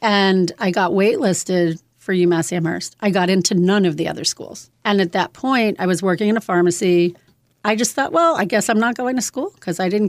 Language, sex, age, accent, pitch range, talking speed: English, female, 40-59, American, 185-230 Hz, 230 wpm